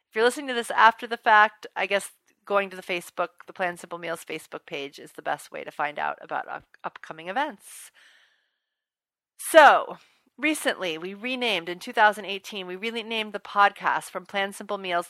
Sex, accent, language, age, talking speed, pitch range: female, American, English, 40-59, 175 wpm, 175-220 Hz